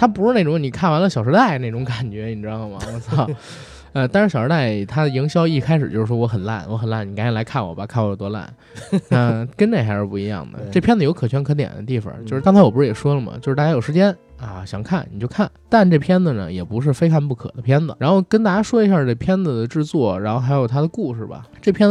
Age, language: 20-39, Chinese